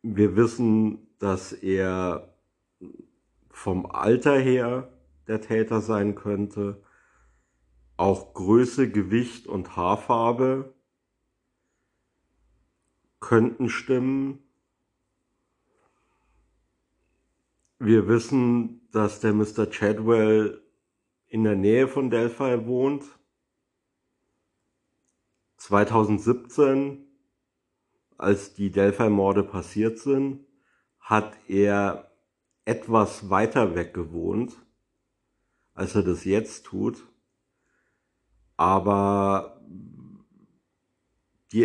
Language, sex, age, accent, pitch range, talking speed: German, male, 50-69, German, 100-115 Hz, 70 wpm